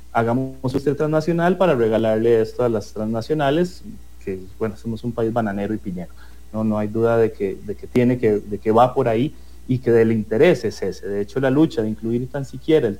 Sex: male